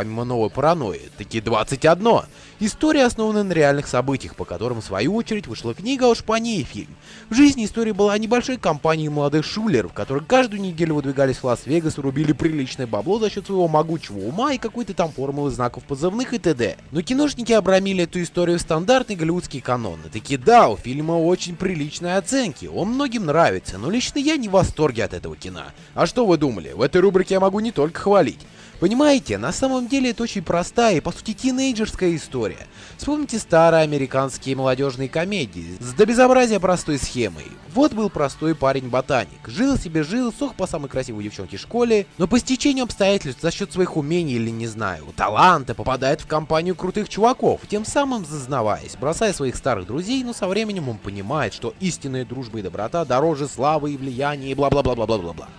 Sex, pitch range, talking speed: male, 135-220 Hz, 180 wpm